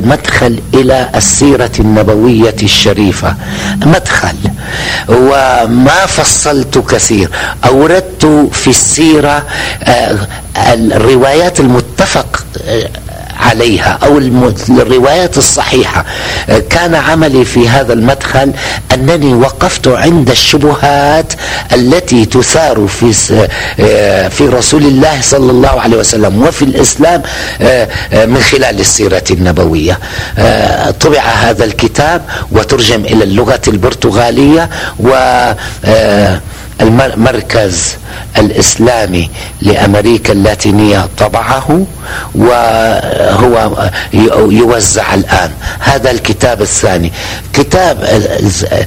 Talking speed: 75 wpm